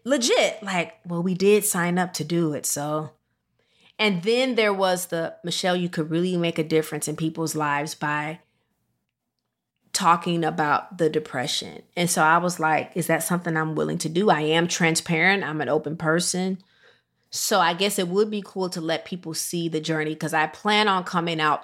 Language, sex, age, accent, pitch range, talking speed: English, female, 30-49, American, 150-180 Hz, 190 wpm